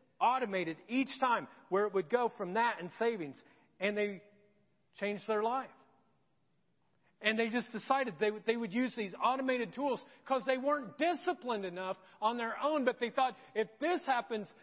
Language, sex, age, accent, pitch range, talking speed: English, male, 40-59, American, 190-245 Hz, 170 wpm